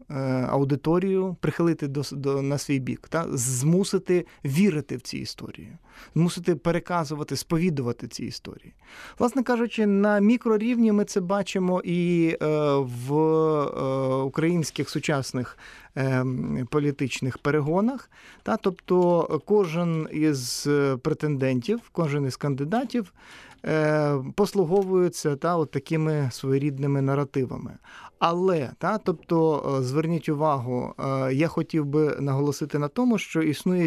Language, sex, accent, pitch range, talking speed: Ukrainian, male, native, 140-185 Hz, 110 wpm